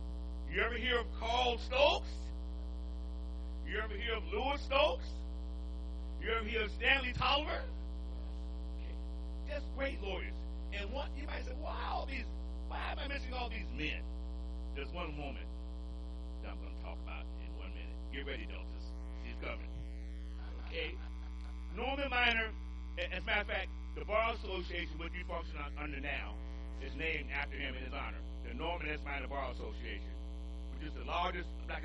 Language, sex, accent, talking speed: English, male, American, 160 wpm